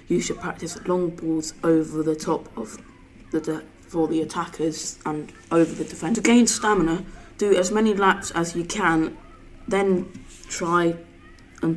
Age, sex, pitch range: 20-39, female, 165-200 Hz